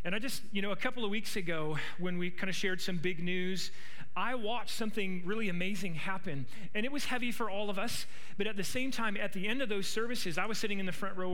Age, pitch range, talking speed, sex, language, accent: 40-59, 180-225 Hz, 265 wpm, male, English, American